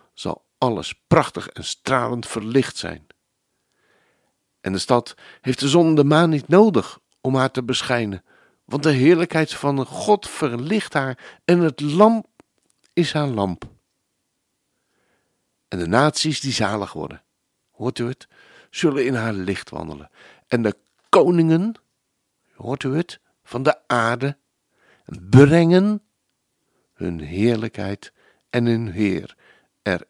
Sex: male